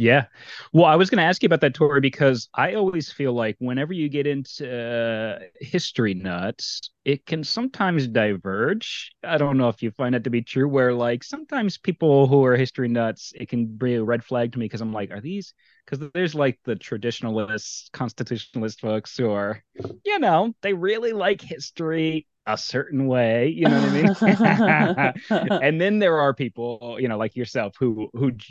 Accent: American